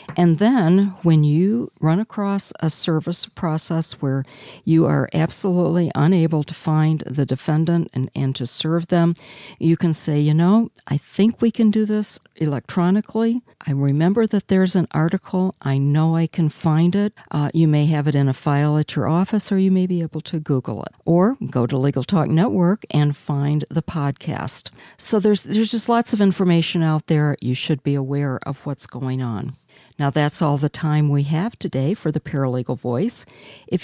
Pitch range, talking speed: 145-190 Hz, 190 wpm